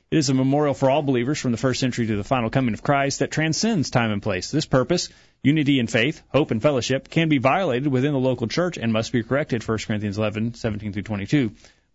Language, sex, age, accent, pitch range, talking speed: English, male, 30-49, American, 110-140 Hz, 225 wpm